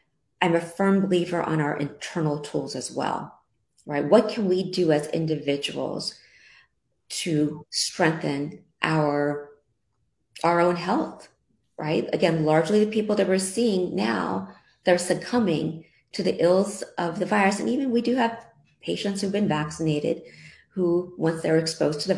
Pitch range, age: 150-185 Hz, 30-49